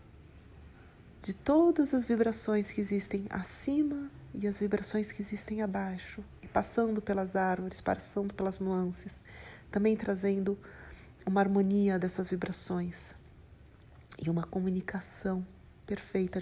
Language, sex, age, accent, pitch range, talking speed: Portuguese, female, 40-59, Brazilian, 180-220 Hz, 110 wpm